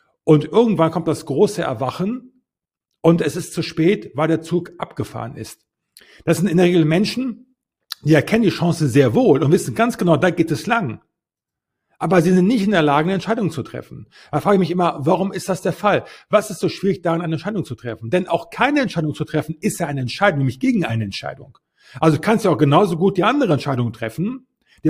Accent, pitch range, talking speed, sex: German, 150-195 Hz, 220 wpm, male